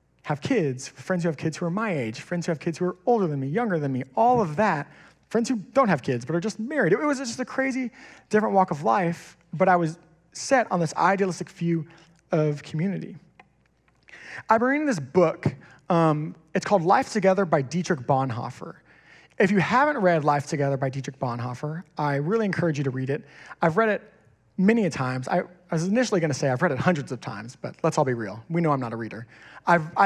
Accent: American